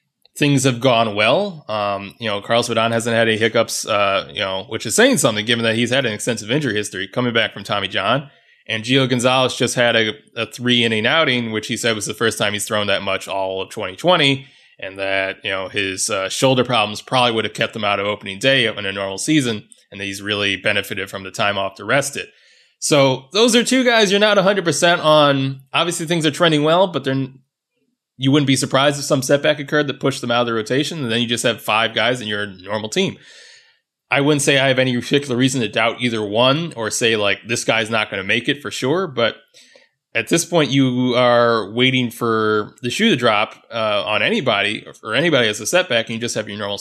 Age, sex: 20-39, male